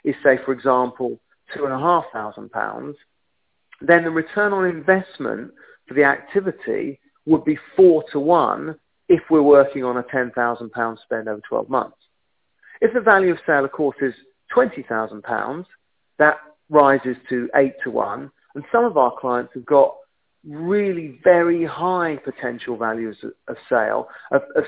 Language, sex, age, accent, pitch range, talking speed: English, male, 40-59, British, 125-180 Hz, 160 wpm